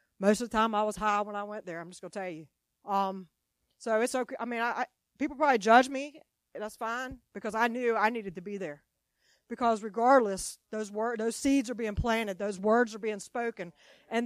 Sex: female